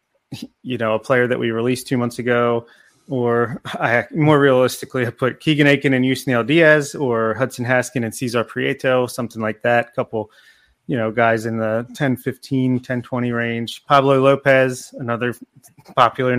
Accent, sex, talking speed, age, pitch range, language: American, male, 160 wpm, 30-49, 120-135 Hz, English